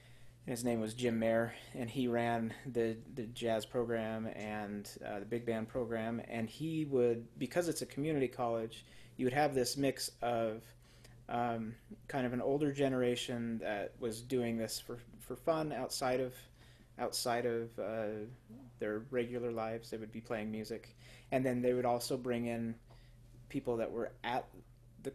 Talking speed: 165 wpm